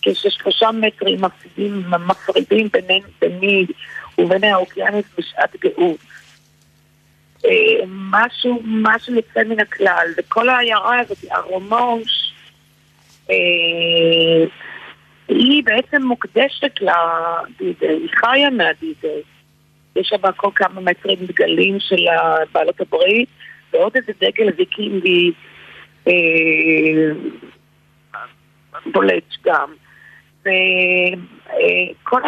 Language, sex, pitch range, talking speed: Hebrew, female, 175-250 Hz, 85 wpm